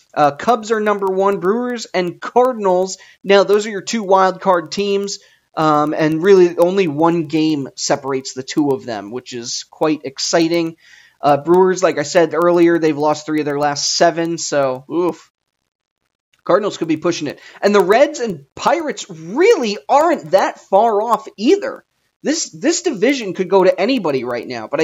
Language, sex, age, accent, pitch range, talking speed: English, male, 30-49, American, 155-205 Hz, 175 wpm